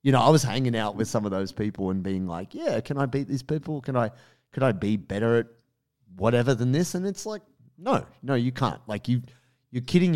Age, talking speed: 30-49, 240 wpm